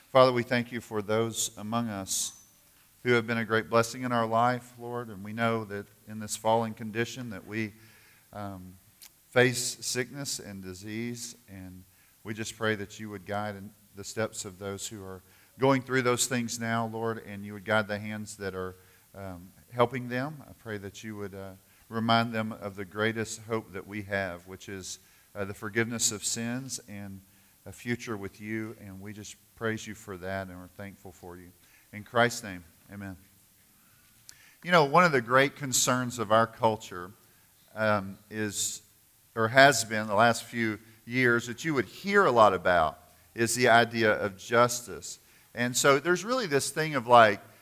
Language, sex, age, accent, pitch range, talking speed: English, male, 40-59, American, 100-125 Hz, 185 wpm